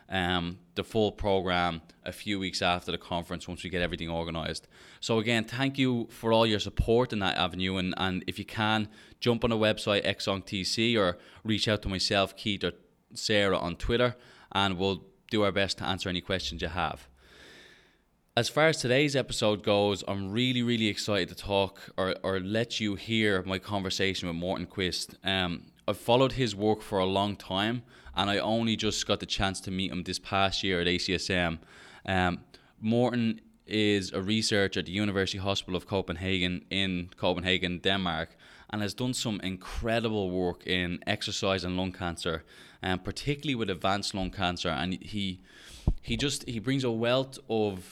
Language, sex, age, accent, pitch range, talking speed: English, male, 20-39, Irish, 90-110 Hz, 180 wpm